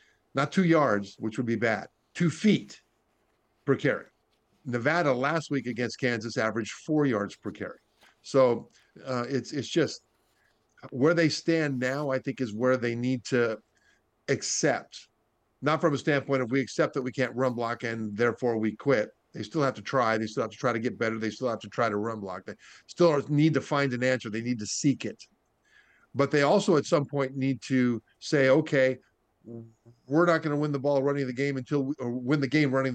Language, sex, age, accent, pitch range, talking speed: English, male, 50-69, American, 115-140 Hz, 205 wpm